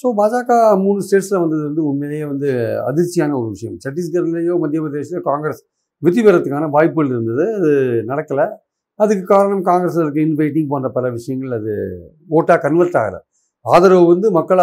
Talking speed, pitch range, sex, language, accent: 150 wpm, 145-185 Hz, male, Tamil, native